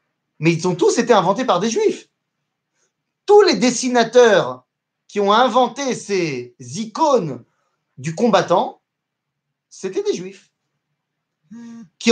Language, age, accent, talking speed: French, 30-49, French, 115 wpm